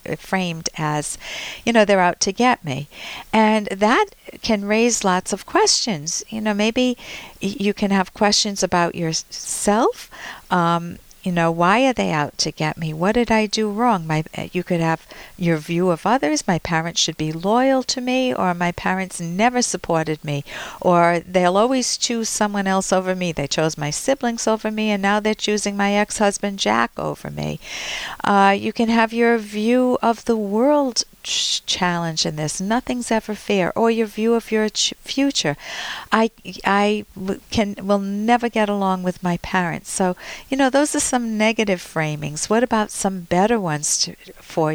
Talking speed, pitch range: 170 wpm, 170-225 Hz